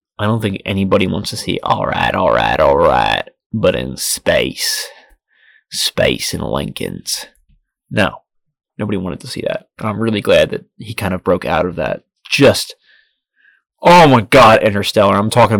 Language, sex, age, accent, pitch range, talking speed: English, male, 20-39, American, 100-165 Hz, 155 wpm